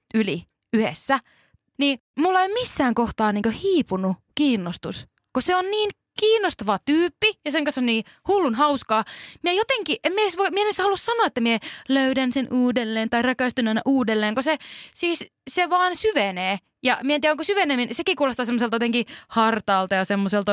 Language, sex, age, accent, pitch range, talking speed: Finnish, female, 20-39, native, 215-305 Hz, 160 wpm